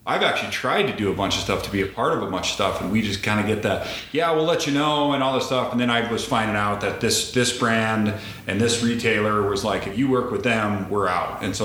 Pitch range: 100-115 Hz